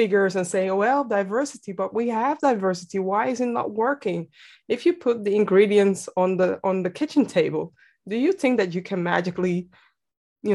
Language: English